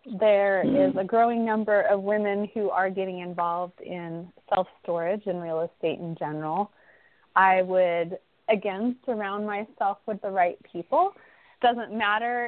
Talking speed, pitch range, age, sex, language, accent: 140 wpm, 185-225 Hz, 20-39, female, English, American